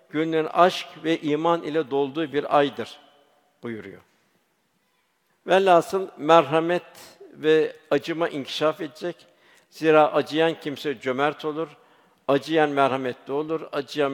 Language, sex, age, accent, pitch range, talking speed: Turkish, male, 60-79, native, 135-160 Hz, 100 wpm